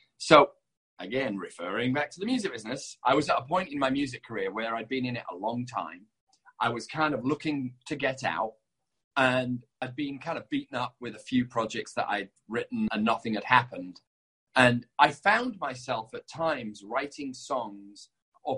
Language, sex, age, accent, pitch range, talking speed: English, male, 30-49, British, 115-155 Hz, 195 wpm